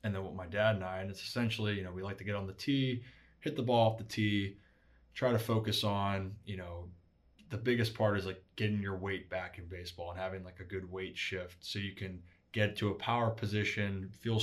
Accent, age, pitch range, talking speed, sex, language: American, 20-39, 95-105 Hz, 240 wpm, male, English